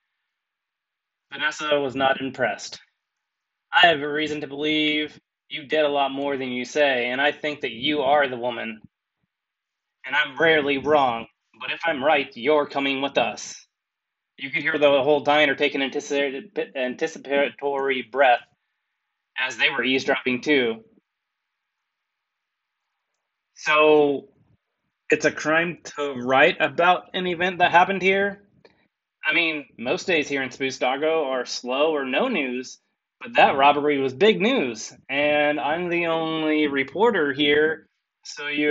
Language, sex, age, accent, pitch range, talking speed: English, male, 20-39, American, 140-160 Hz, 140 wpm